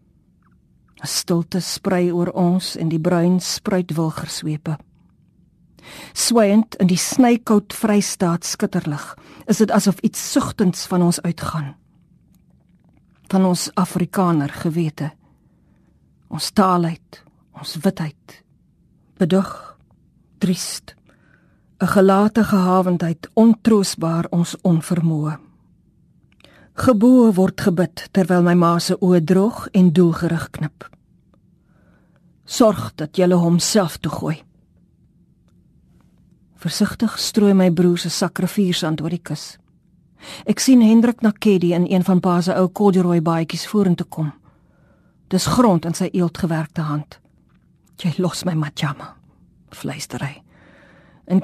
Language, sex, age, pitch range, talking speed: Dutch, female, 40-59, 165-195 Hz, 110 wpm